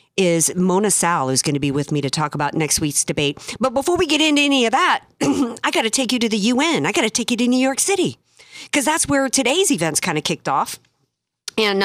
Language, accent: English, American